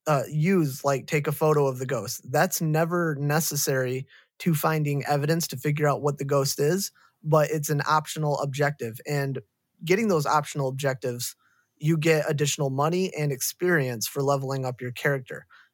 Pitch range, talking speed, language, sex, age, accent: 135-155 Hz, 165 wpm, English, male, 20-39, American